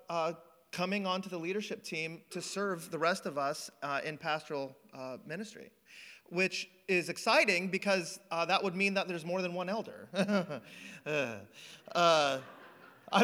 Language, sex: English, male